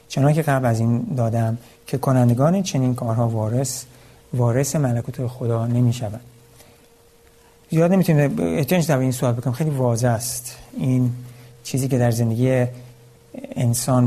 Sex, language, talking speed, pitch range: male, Persian, 130 wpm, 120-140 Hz